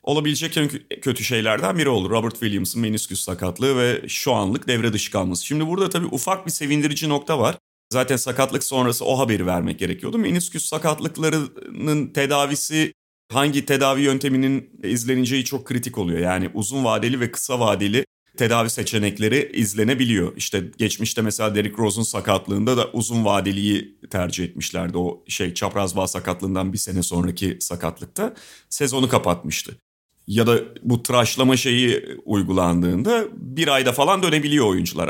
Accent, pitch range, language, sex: native, 100-140 Hz, Turkish, male